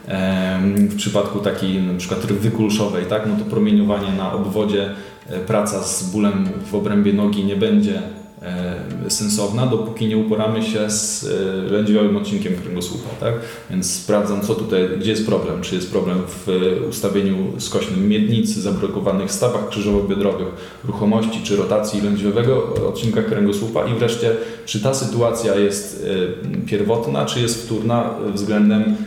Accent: native